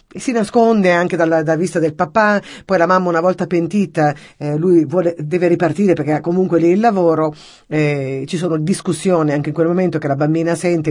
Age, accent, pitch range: 50-69, native, 145-170 Hz